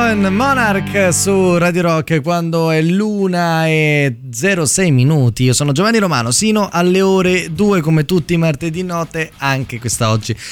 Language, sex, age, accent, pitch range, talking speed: Italian, male, 20-39, native, 115-160 Hz, 145 wpm